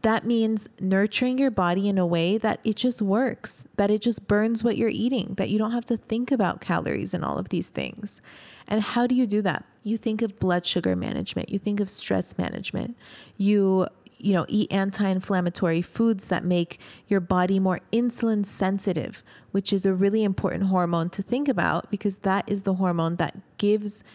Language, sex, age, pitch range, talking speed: English, female, 30-49, 180-215 Hz, 195 wpm